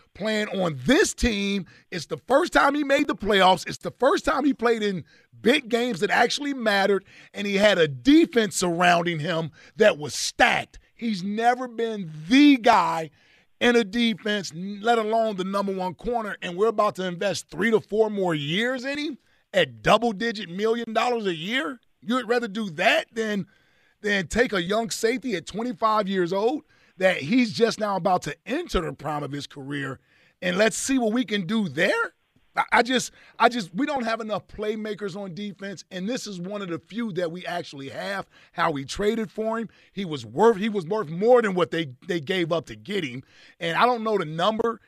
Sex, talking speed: male, 200 wpm